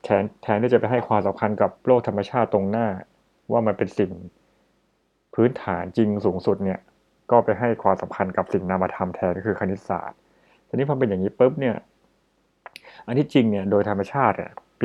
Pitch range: 100-125 Hz